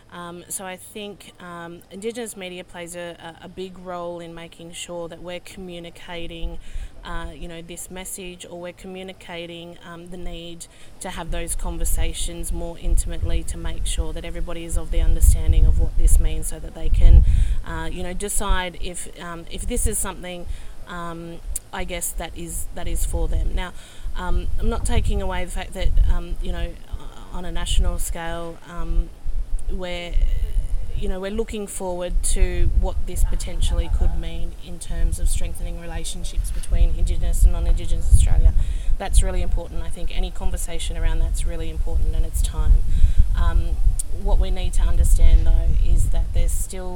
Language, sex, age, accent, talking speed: English, female, 30-49, Australian, 170 wpm